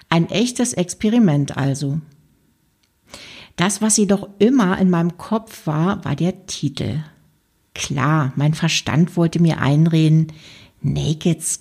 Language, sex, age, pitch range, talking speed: German, female, 60-79, 150-190 Hz, 115 wpm